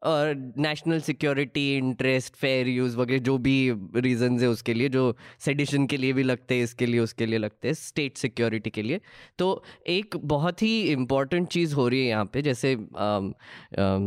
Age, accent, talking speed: 20-39, native, 190 wpm